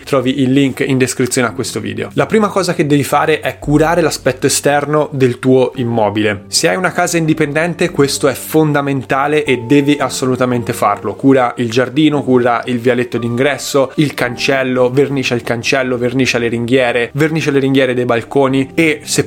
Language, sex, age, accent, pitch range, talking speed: Italian, male, 20-39, native, 125-155 Hz, 170 wpm